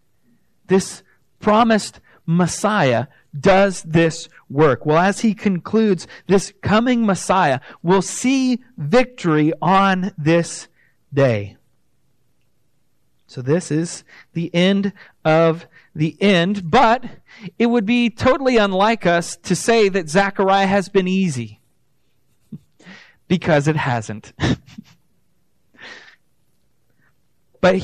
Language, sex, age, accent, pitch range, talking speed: English, male, 40-59, American, 155-205 Hz, 95 wpm